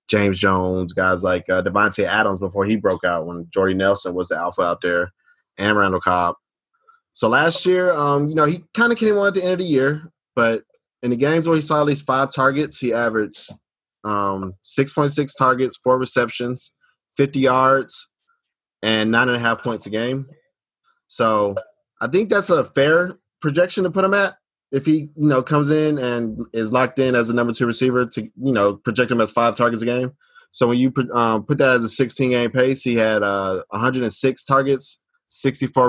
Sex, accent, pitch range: male, American, 105-140 Hz